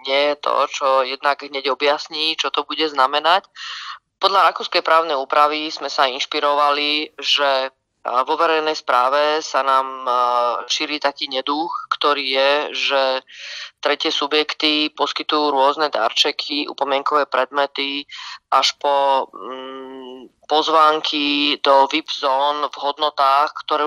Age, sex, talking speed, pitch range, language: 20-39, female, 115 wpm, 140-155 Hz, Slovak